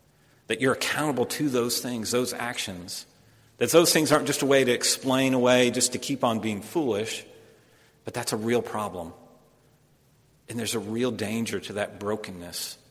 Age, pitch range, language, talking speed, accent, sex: 40-59, 115-140 Hz, English, 170 wpm, American, male